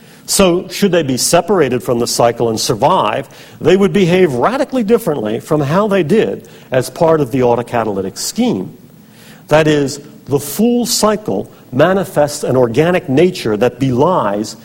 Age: 50-69